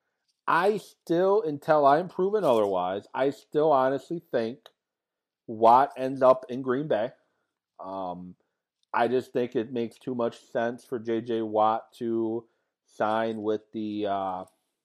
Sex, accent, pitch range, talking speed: male, American, 110-150 Hz, 135 wpm